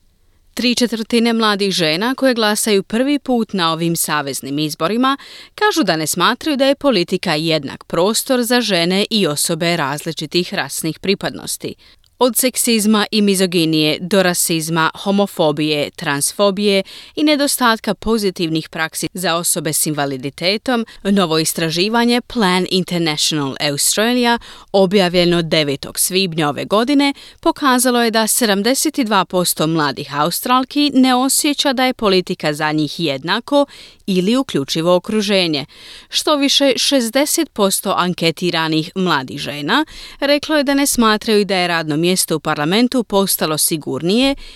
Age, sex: 30-49, female